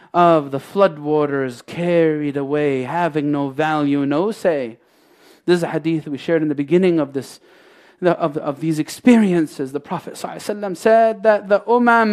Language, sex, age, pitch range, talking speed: English, male, 30-49, 175-280 Hz, 160 wpm